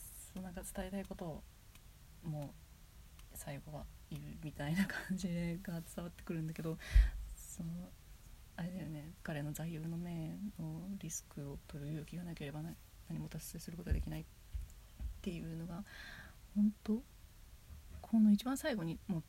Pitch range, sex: 165-225 Hz, female